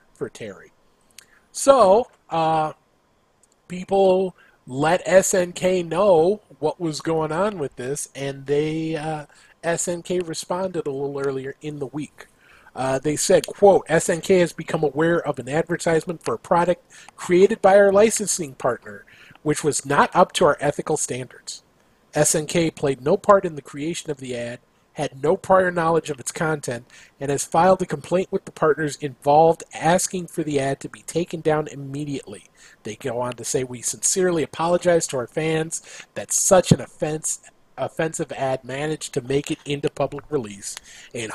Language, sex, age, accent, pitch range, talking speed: English, male, 40-59, American, 140-180 Hz, 160 wpm